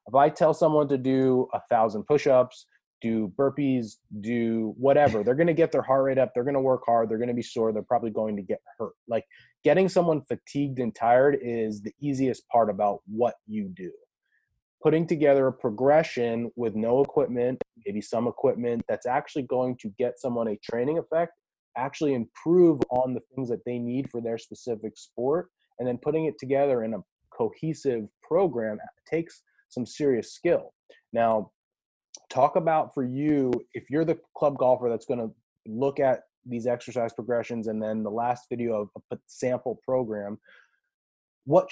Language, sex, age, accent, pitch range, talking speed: English, male, 20-39, American, 115-140 Hz, 180 wpm